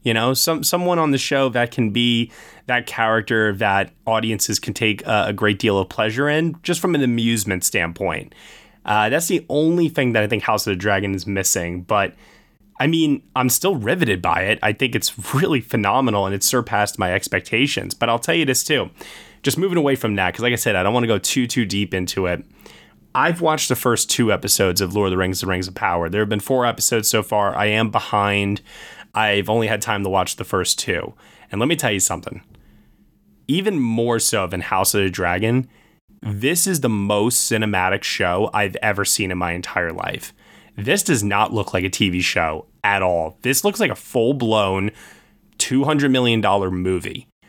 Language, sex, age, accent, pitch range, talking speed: English, male, 20-39, American, 100-130 Hz, 205 wpm